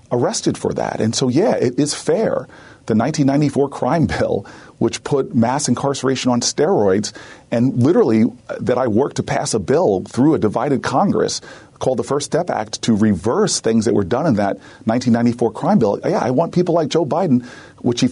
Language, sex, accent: English, male, American